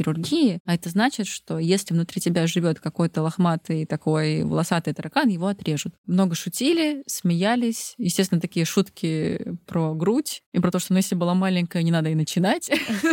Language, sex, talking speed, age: Russian, female, 165 wpm, 20-39